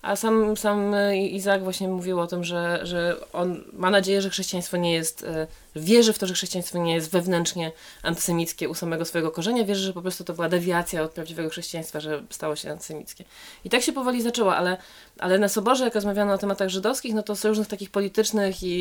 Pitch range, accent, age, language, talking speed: 175-220 Hz, native, 20-39, Polish, 205 wpm